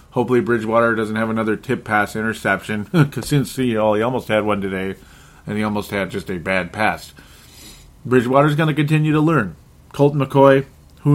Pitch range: 95-125 Hz